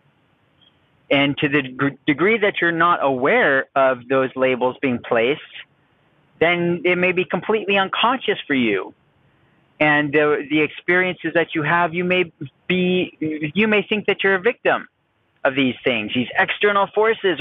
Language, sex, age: English, male, 30-49